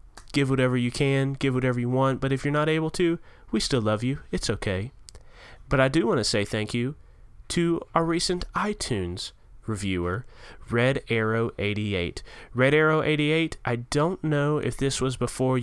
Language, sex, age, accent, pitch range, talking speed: English, male, 20-39, American, 105-135 Hz, 175 wpm